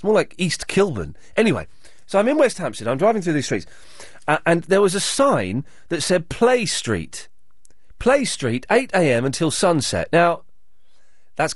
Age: 30-49